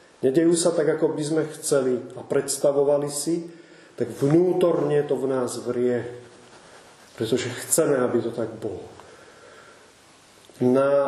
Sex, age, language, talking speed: male, 30-49, Czech, 125 wpm